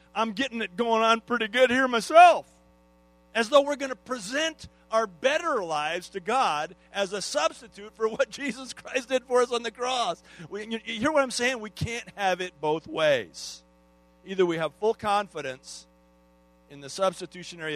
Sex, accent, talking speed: male, American, 180 wpm